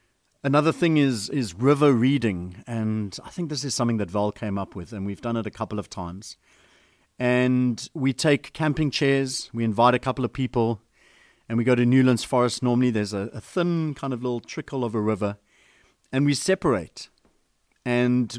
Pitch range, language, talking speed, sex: 110-140 Hz, English, 190 wpm, male